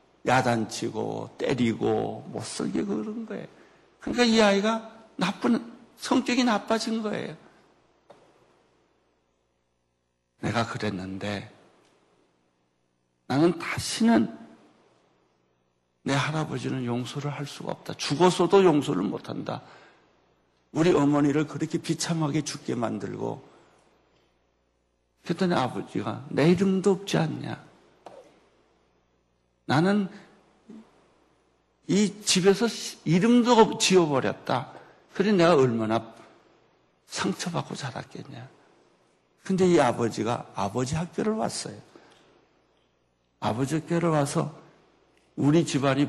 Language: Korean